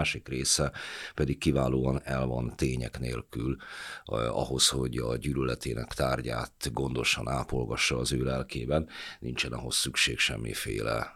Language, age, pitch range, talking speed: Hungarian, 50-69, 70-80 Hz, 125 wpm